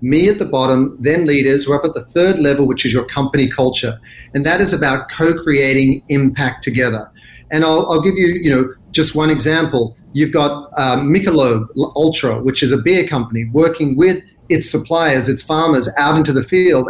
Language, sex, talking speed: English, male, 190 wpm